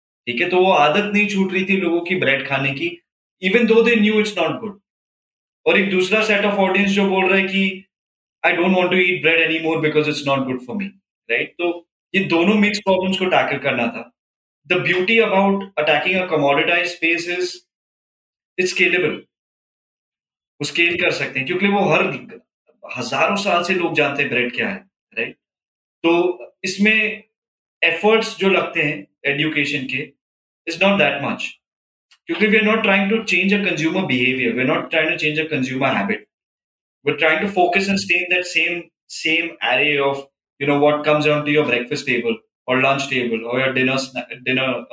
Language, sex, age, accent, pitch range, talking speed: Hindi, male, 20-39, native, 145-195 Hz, 40 wpm